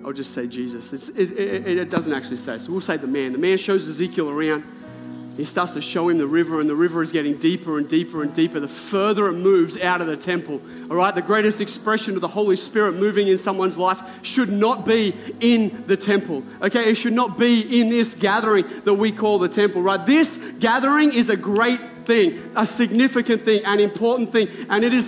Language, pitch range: English, 190-260 Hz